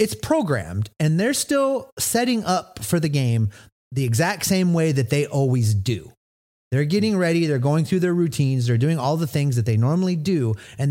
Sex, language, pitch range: male, English, 115-165 Hz